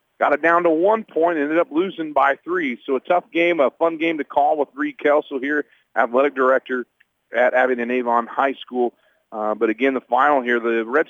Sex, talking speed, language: male, 215 wpm, English